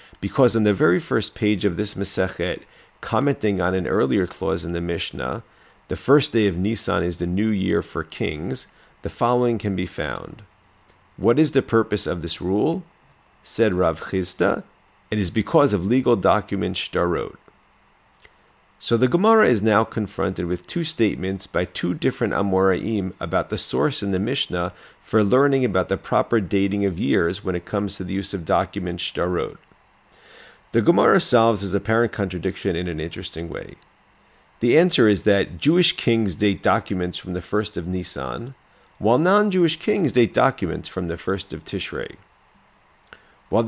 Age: 40-59